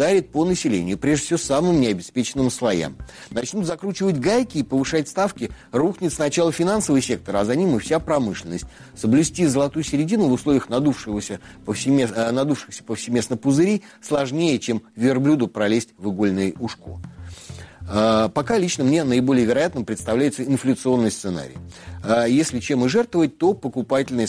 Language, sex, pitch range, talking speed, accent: Russian, male, 105-155 Hz, 130 wpm, native